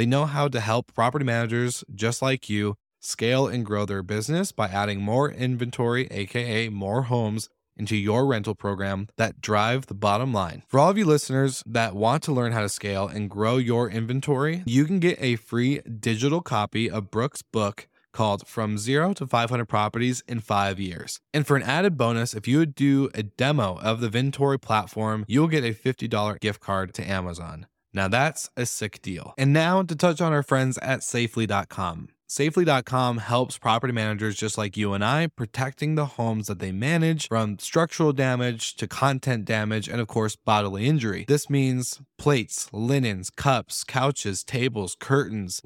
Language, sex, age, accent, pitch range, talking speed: English, male, 20-39, American, 105-135 Hz, 180 wpm